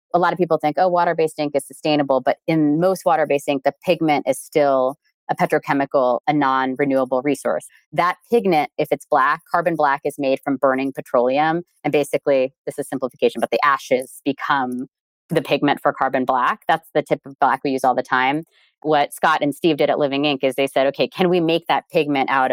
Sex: female